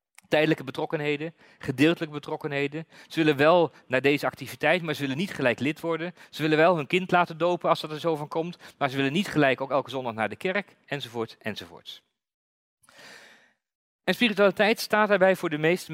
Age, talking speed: 40-59, 190 wpm